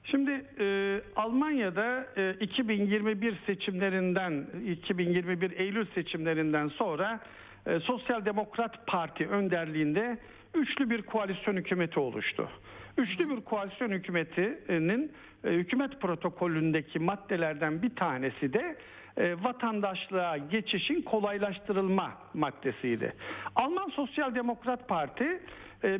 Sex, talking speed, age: male, 95 wpm, 60-79